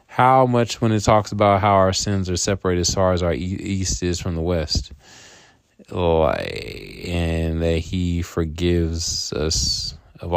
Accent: American